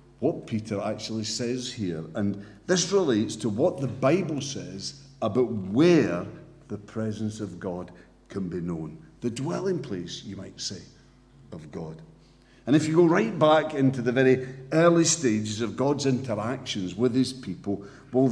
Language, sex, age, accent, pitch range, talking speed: English, male, 50-69, British, 110-155 Hz, 155 wpm